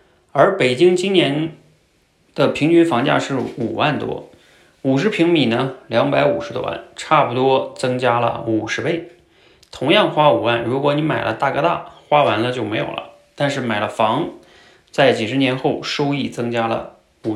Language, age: Chinese, 20-39